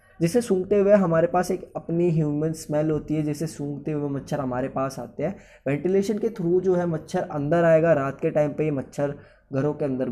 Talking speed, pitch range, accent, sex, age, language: 215 wpm, 125-165 Hz, native, male, 20-39, Hindi